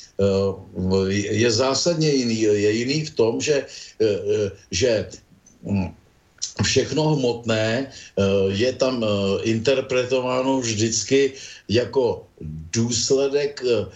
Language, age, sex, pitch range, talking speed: Slovak, 50-69, male, 110-135 Hz, 75 wpm